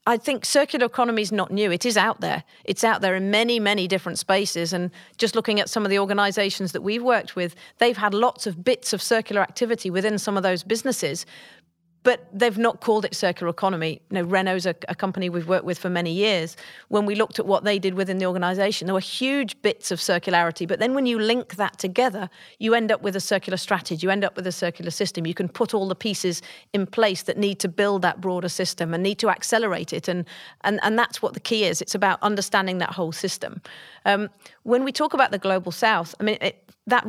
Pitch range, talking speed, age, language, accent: 180-225 Hz, 235 wpm, 40-59, English, British